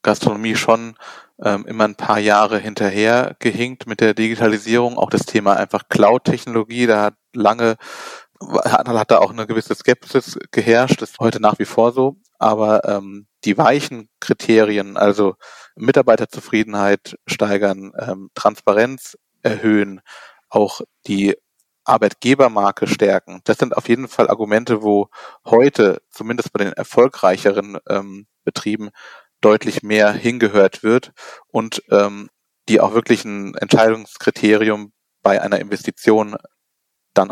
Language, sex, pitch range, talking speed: German, male, 105-115 Hz, 125 wpm